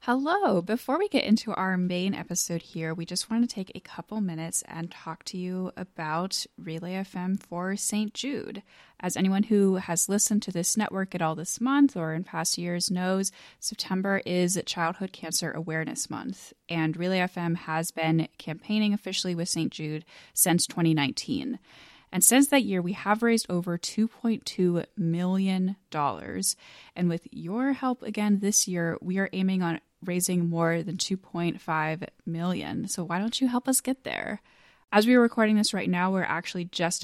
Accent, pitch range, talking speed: American, 165-200 Hz, 170 wpm